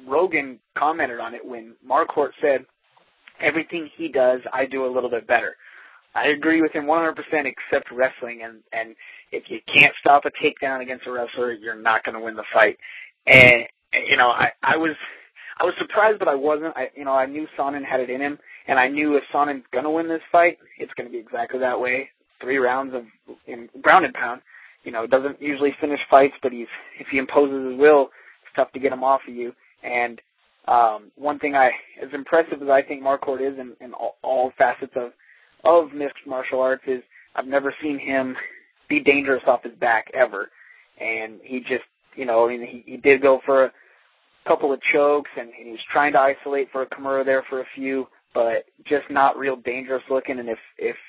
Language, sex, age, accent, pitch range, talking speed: English, male, 20-39, American, 130-150 Hz, 210 wpm